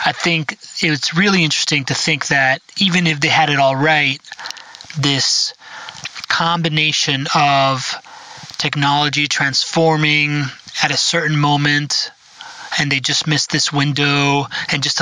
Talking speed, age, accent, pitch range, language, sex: 130 wpm, 30-49, American, 135-155 Hz, English, male